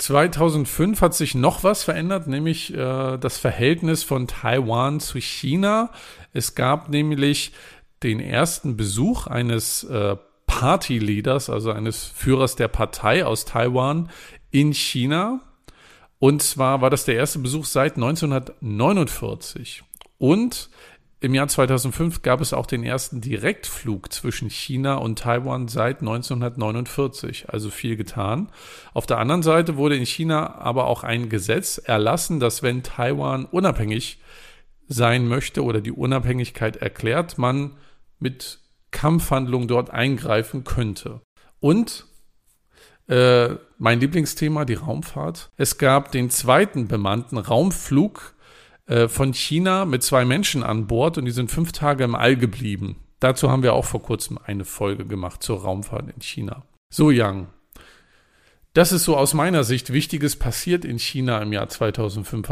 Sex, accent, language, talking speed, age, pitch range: male, German, German, 135 wpm, 50-69, 115-150 Hz